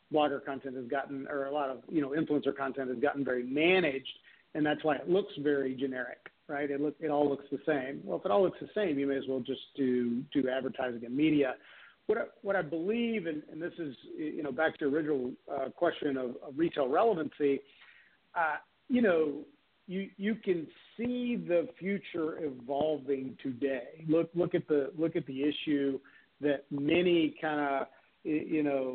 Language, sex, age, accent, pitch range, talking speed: English, male, 50-69, American, 140-160 Hz, 195 wpm